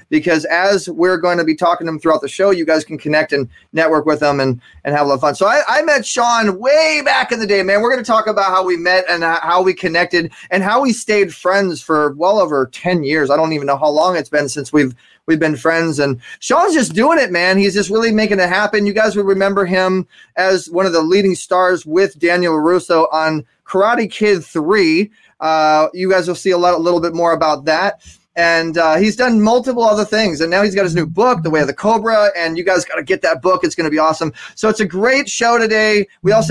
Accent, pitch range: American, 165-215 Hz